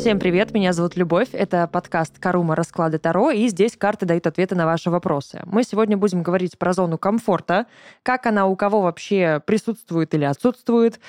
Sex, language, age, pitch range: female, Russian, 20-39, 170-220 Hz